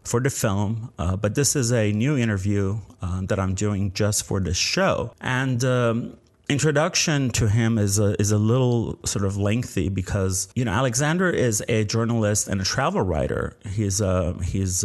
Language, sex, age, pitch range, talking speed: English, male, 30-49, 100-125 Hz, 180 wpm